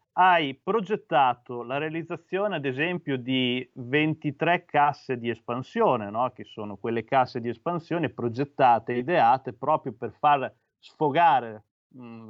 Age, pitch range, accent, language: 30-49, 125-175 Hz, native, Italian